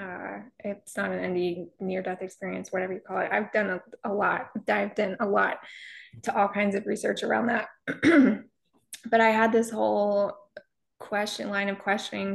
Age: 20-39